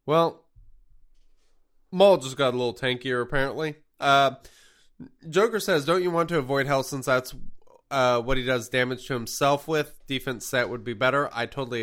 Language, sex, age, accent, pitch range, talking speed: English, male, 20-39, American, 100-130 Hz, 170 wpm